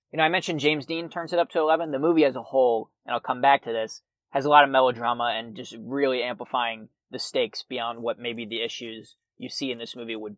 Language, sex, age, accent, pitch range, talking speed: English, male, 20-39, American, 120-150 Hz, 255 wpm